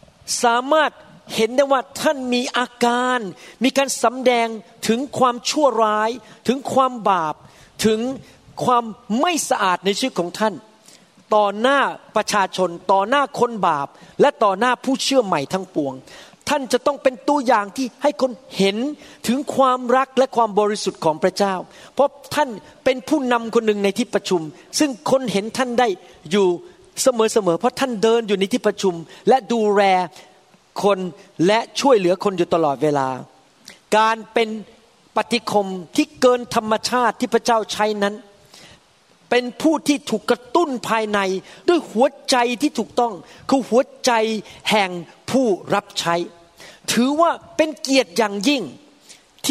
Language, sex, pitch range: Thai, male, 200-260 Hz